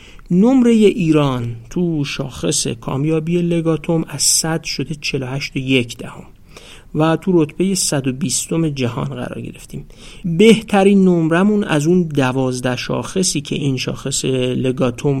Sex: male